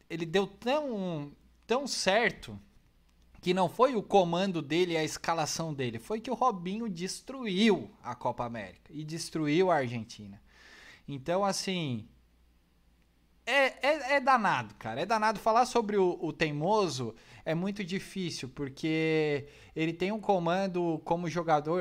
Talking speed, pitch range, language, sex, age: 140 wpm, 125-185 Hz, Portuguese, male, 20-39